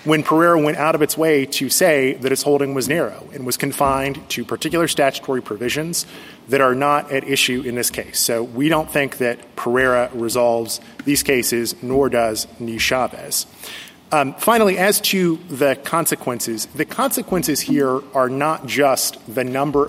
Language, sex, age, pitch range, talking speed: English, male, 30-49, 125-150 Hz, 165 wpm